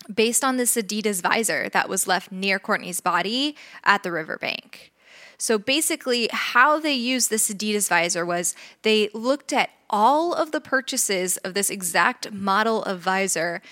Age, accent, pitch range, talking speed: 20-39, American, 200-265 Hz, 160 wpm